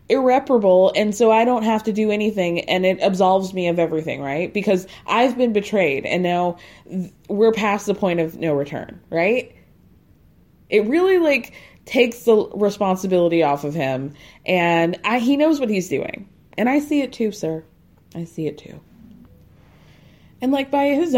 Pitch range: 170-210 Hz